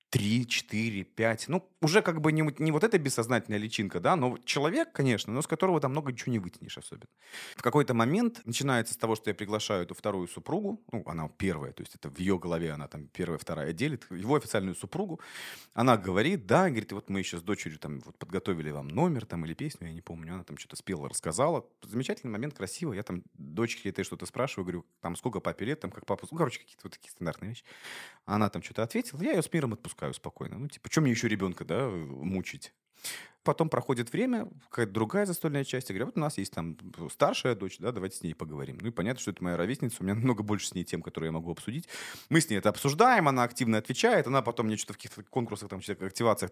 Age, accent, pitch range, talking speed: 30-49, native, 90-130 Hz, 230 wpm